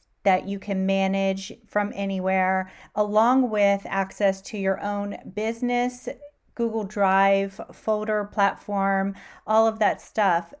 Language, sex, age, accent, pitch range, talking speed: English, female, 40-59, American, 195-235 Hz, 120 wpm